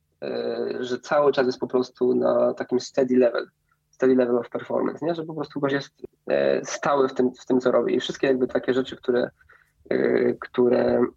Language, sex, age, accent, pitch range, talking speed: Polish, male, 20-39, native, 125-140 Hz, 185 wpm